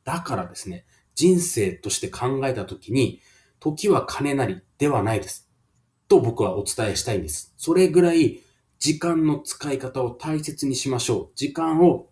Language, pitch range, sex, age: Japanese, 110-155 Hz, male, 30-49